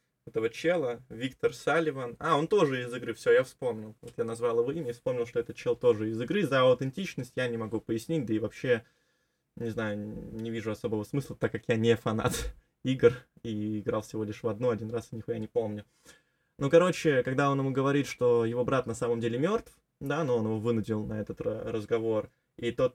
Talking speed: 210 wpm